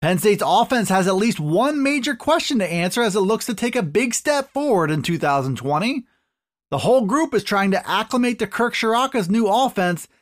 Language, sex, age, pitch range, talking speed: English, male, 30-49, 180-240 Hz, 200 wpm